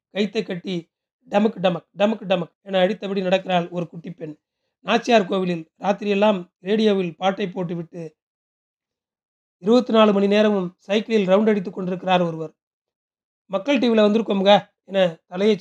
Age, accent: 40-59, native